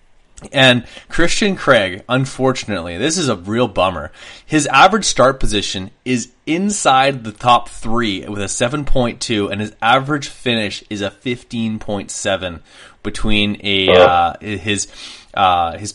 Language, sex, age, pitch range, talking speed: English, male, 20-39, 100-125 Hz, 130 wpm